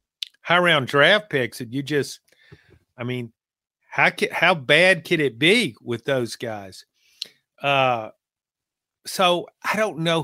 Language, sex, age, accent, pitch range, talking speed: English, male, 50-69, American, 135-165 Hz, 140 wpm